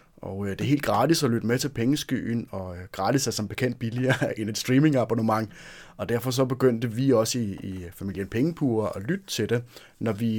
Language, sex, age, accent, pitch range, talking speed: Danish, male, 30-49, native, 105-135 Hz, 195 wpm